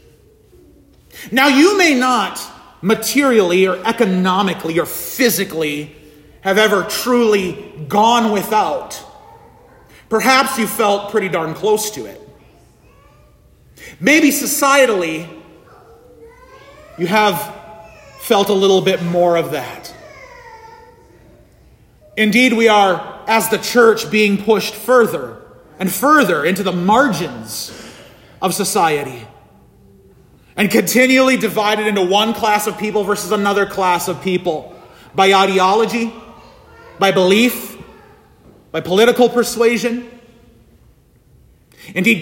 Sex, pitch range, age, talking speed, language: male, 170-235 Hz, 30-49, 100 wpm, English